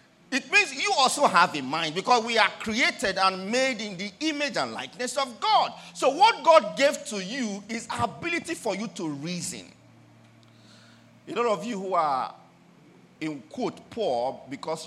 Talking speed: 170 wpm